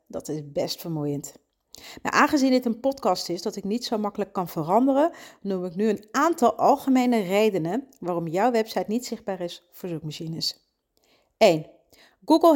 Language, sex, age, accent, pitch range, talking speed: Dutch, female, 40-59, Dutch, 180-265 Hz, 165 wpm